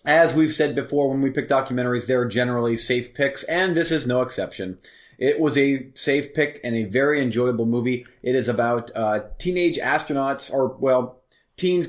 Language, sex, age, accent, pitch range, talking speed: English, male, 30-49, American, 110-140 Hz, 180 wpm